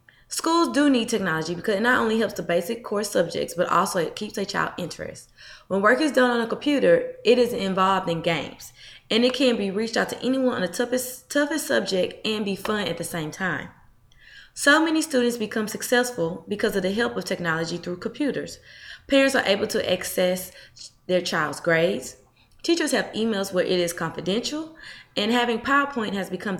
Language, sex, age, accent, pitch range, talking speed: English, female, 20-39, American, 180-245 Hz, 190 wpm